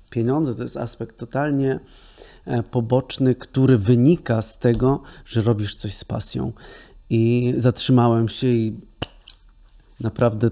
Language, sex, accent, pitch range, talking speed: Polish, male, native, 105-120 Hz, 115 wpm